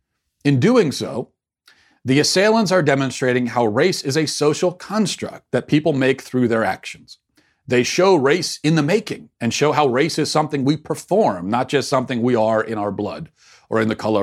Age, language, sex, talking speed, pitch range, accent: 40-59, English, male, 190 wpm, 110-155 Hz, American